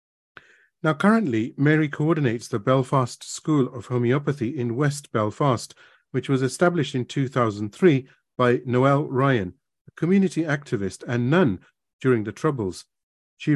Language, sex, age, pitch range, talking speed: English, male, 40-59, 115-150 Hz, 130 wpm